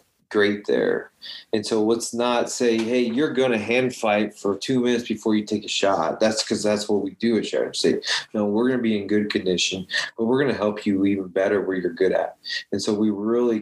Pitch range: 95-115 Hz